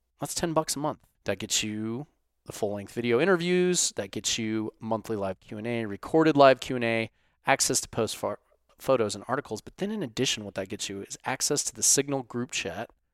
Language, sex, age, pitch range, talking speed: English, male, 30-49, 105-140 Hz, 190 wpm